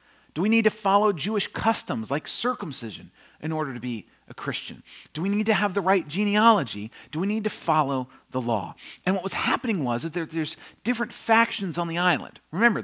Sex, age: male, 40-59